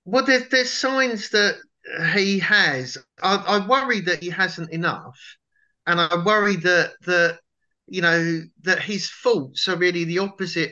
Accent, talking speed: British, 155 wpm